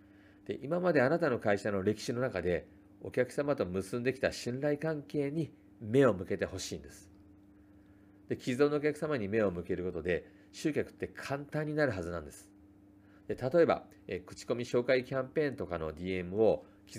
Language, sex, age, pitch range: Japanese, male, 40-59, 100-125 Hz